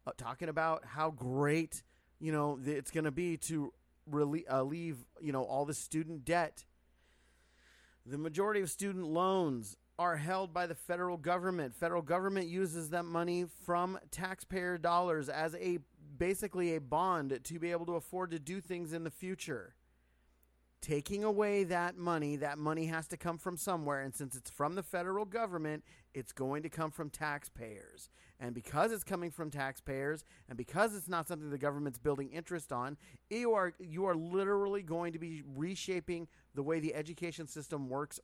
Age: 30-49